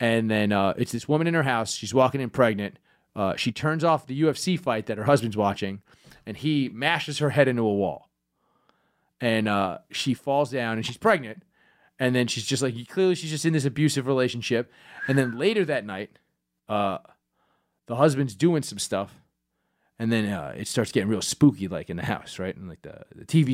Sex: male